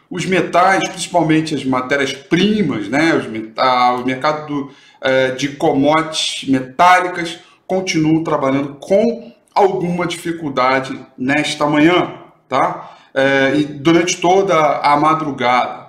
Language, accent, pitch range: Portuguese, Brazilian, 135-160 Hz